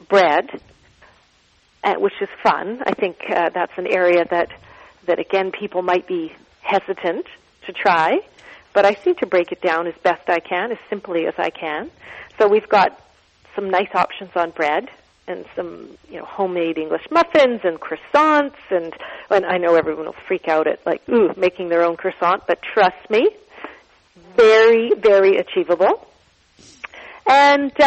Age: 40-59